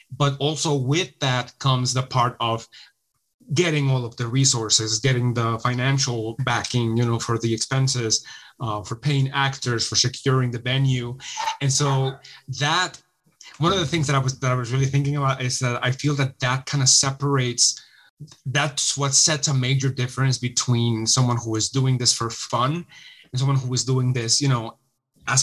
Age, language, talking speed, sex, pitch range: 30-49, English, 185 wpm, male, 120-140 Hz